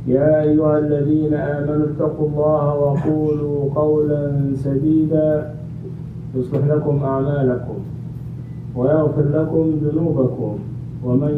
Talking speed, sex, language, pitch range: 85 wpm, male, English, 130-155 Hz